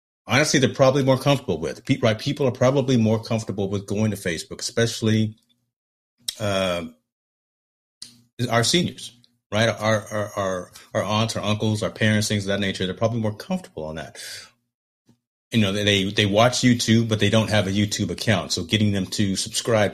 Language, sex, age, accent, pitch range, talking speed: English, male, 30-49, American, 95-115 Hz, 180 wpm